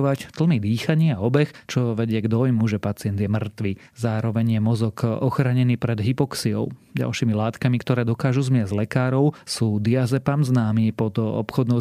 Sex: male